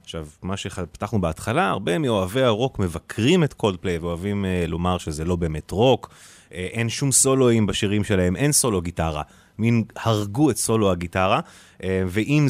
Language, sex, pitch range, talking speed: English, male, 90-120 Hz, 155 wpm